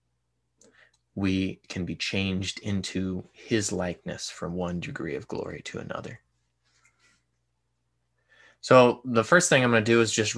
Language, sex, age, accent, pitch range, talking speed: English, male, 20-39, American, 95-110 Hz, 140 wpm